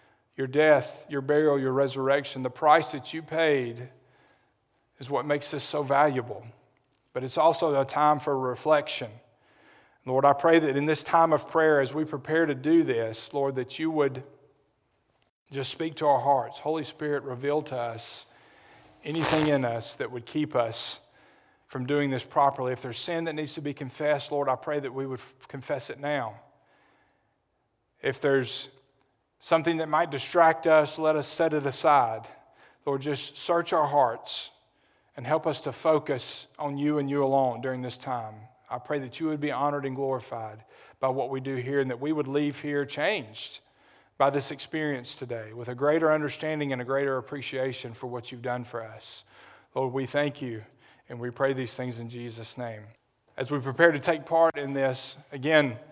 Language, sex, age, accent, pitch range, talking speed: English, male, 40-59, American, 125-150 Hz, 185 wpm